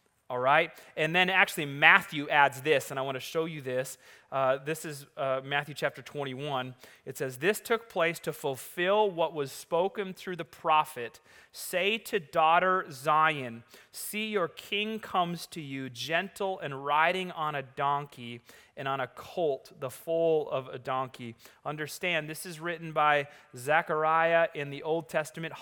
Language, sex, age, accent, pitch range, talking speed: English, male, 30-49, American, 135-175 Hz, 165 wpm